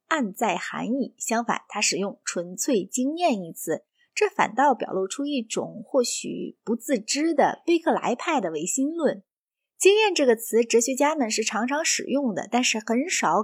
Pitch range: 225-320 Hz